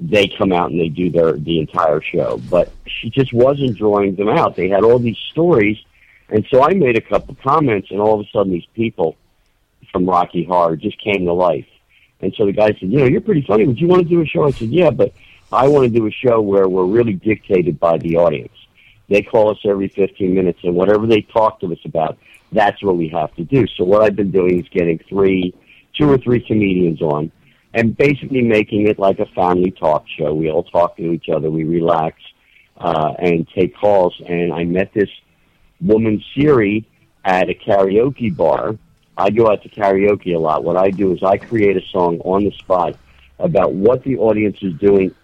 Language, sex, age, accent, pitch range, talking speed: English, male, 50-69, American, 90-110 Hz, 220 wpm